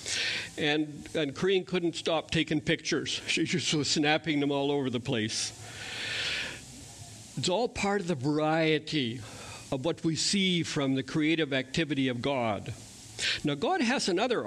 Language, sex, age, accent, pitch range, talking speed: English, male, 60-79, American, 120-165 Hz, 150 wpm